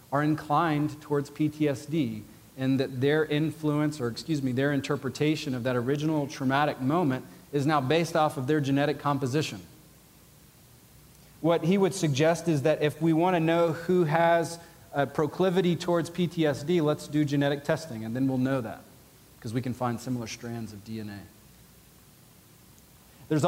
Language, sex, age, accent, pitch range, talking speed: English, male, 40-59, American, 130-160 Hz, 155 wpm